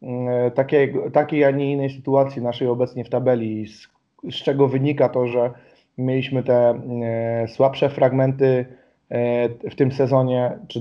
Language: Polish